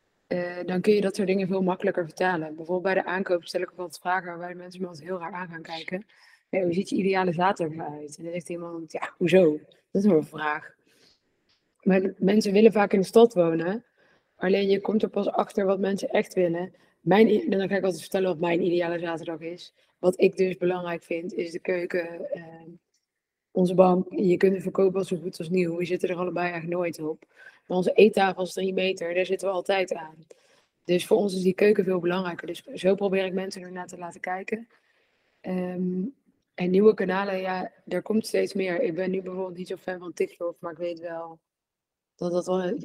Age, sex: 20-39, female